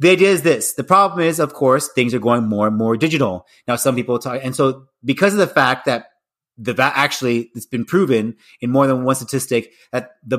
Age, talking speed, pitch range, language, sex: 30-49, 225 wpm, 115-150 Hz, English, male